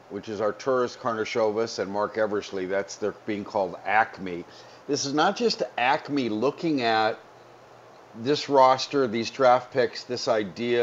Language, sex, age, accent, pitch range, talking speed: English, male, 50-69, American, 105-130 Hz, 145 wpm